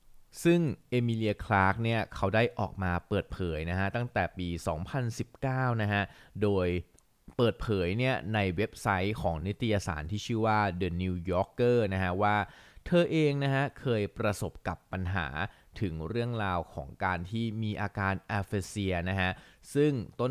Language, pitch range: Thai, 90-120 Hz